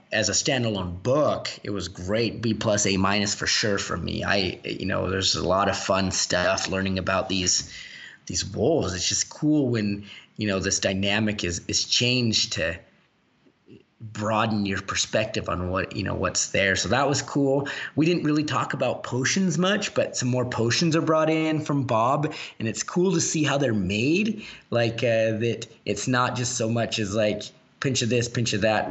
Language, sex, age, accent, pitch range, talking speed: English, male, 30-49, American, 105-135 Hz, 195 wpm